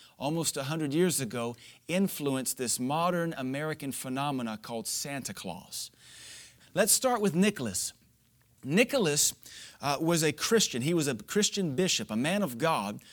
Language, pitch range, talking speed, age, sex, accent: English, 130-170 Hz, 135 wpm, 30-49, male, American